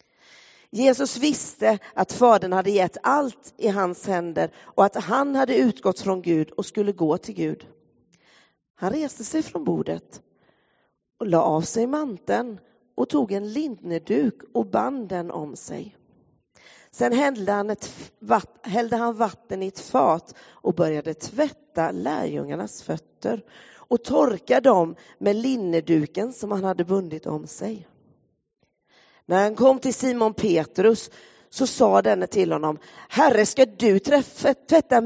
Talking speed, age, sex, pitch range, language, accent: 135 wpm, 40-59, female, 175-260 Hz, Swedish, native